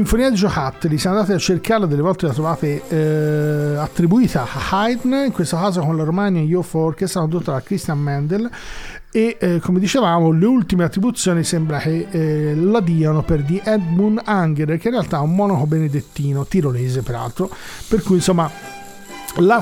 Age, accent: 40-59, native